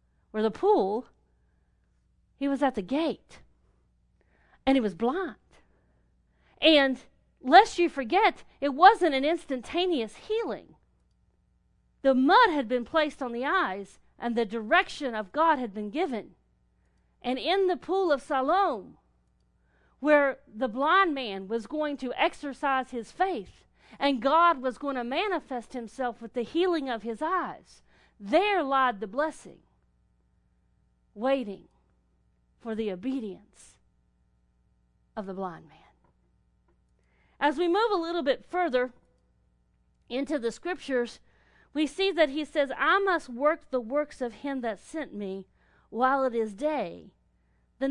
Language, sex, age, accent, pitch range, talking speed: English, female, 40-59, American, 220-325 Hz, 135 wpm